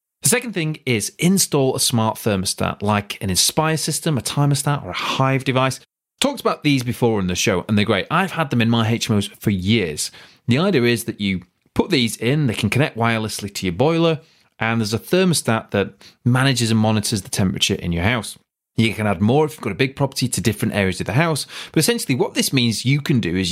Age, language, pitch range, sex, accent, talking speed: 30-49, English, 105-140 Hz, male, British, 225 wpm